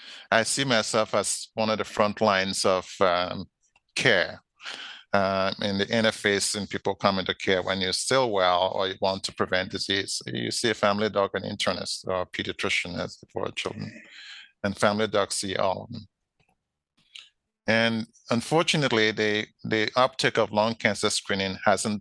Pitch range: 95-110 Hz